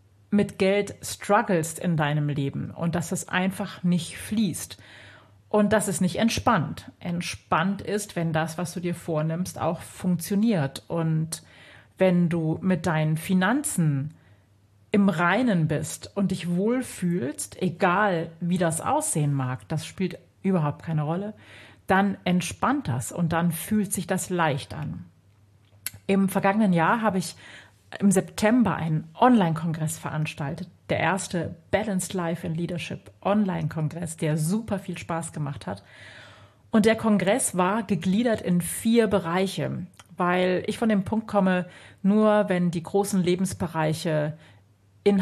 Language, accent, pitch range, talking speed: German, German, 155-190 Hz, 135 wpm